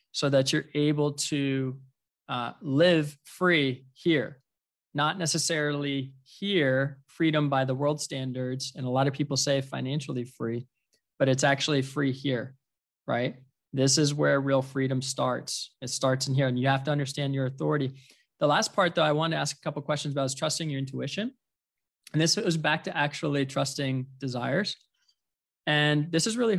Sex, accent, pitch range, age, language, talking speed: male, American, 135-160 Hz, 20-39, English, 175 wpm